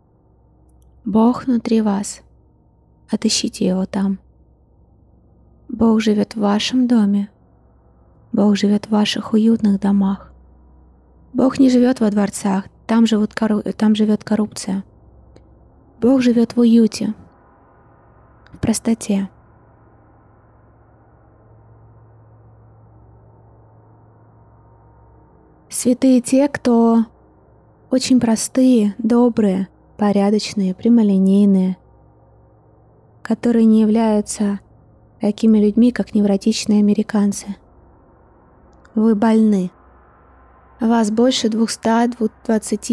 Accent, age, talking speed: native, 20-39, 75 wpm